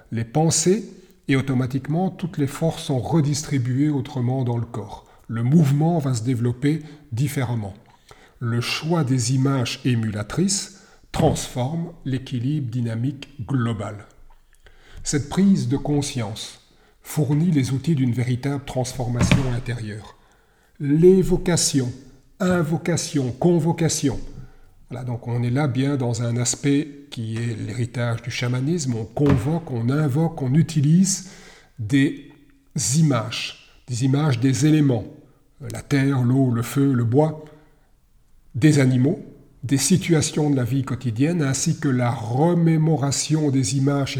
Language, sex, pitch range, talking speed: French, male, 125-155 Hz, 120 wpm